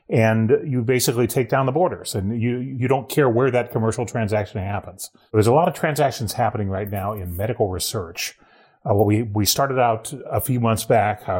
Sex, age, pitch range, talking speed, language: male, 30-49, 100-120 Hz, 200 wpm, English